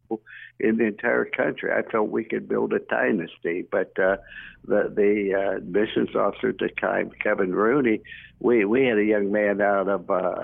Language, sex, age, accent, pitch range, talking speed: English, male, 60-79, American, 100-125 Hz, 185 wpm